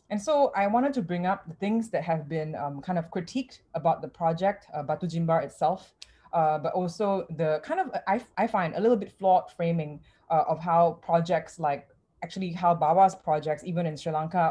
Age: 20-39